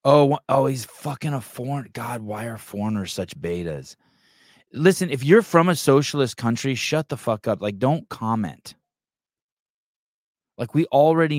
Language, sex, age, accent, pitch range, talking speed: English, male, 20-39, American, 100-135 Hz, 155 wpm